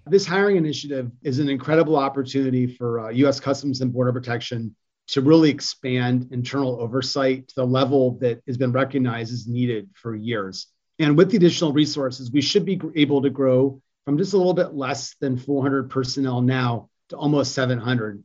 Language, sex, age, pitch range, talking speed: English, male, 40-59, 125-145 Hz, 180 wpm